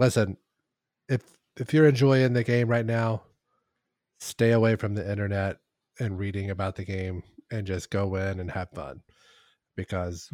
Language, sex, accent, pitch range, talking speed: English, male, American, 100-115 Hz, 155 wpm